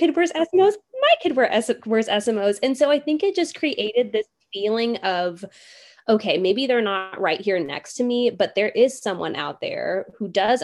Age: 20-39